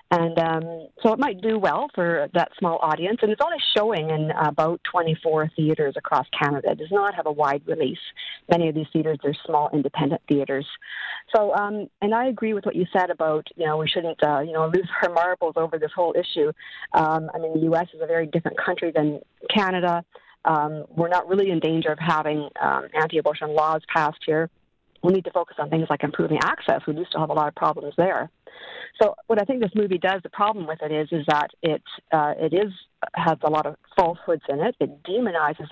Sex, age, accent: female, 50-69, American